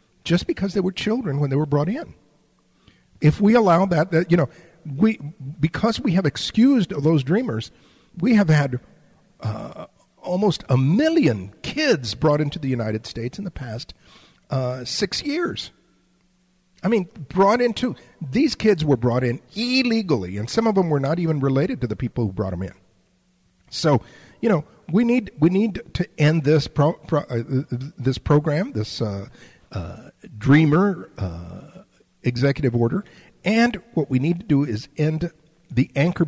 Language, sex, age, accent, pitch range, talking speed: English, male, 50-69, American, 125-185 Hz, 165 wpm